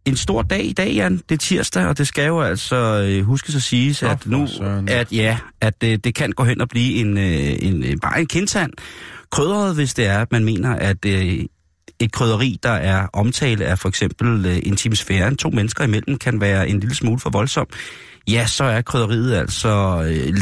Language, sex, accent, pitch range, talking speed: Danish, male, native, 100-130 Hz, 215 wpm